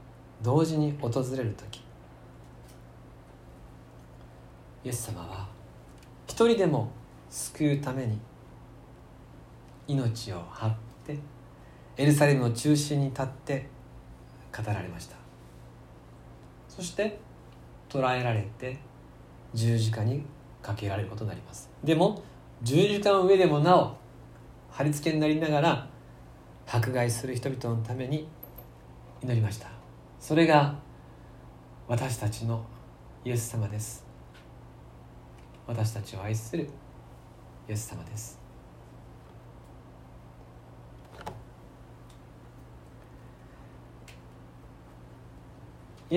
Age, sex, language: 40-59, male, Japanese